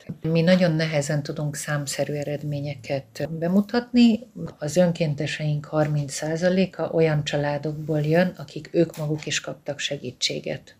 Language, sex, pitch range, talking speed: Hungarian, female, 145-165 Hz, 105 wpm